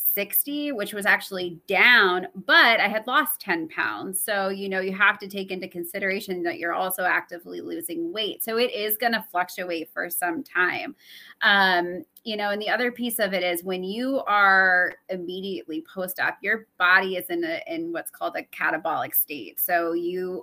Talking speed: 190 wpm